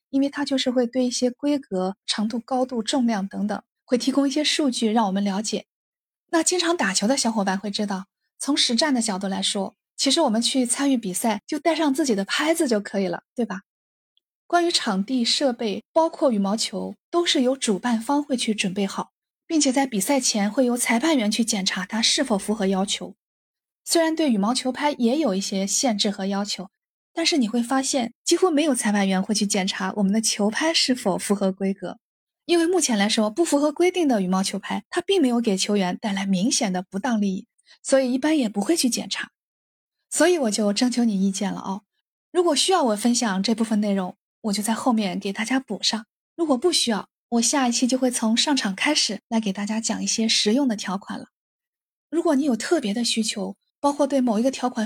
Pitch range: 205-275 Hz